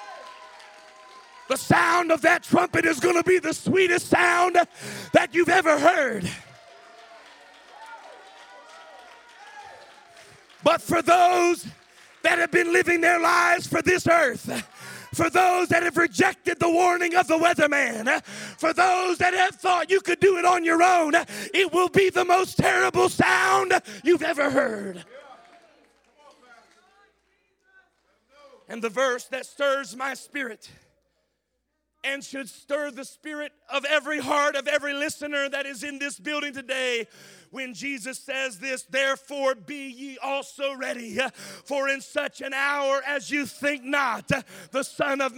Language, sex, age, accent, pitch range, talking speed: English, male, 40-59, American, 275-340 Hz, 140 wpm